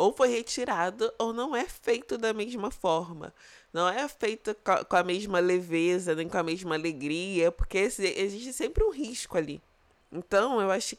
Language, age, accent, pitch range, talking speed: Portuguese, 20-39, Brazilian, 165-210 Hz, 170 wpm